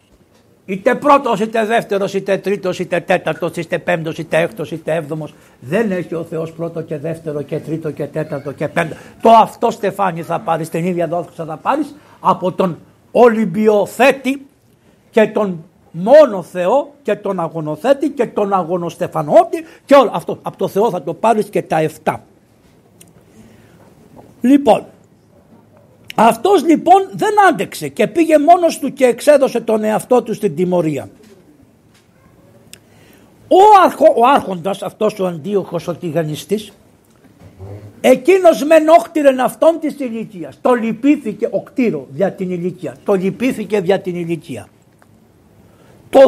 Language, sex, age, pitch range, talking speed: Greek, male, 60-79, 170-275 Hz, 135 wpm